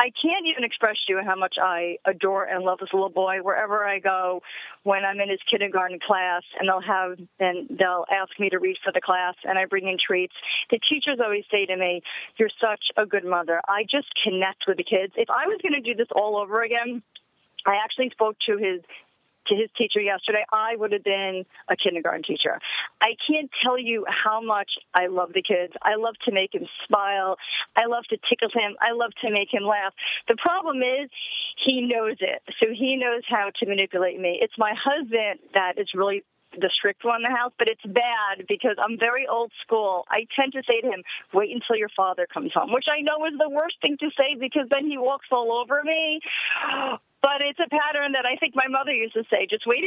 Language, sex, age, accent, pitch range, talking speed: English, female, 40-59, American, 195-270 Hz, 225 wpm